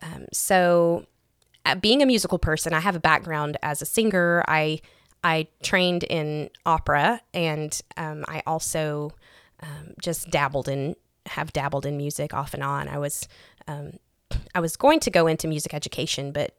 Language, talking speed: English, 165 wpm